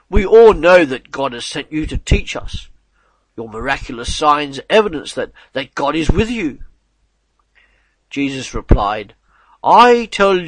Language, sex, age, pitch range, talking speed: English, male, 50-69, 130-180 Hz, 145 wpm